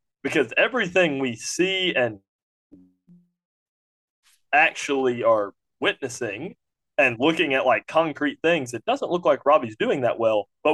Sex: male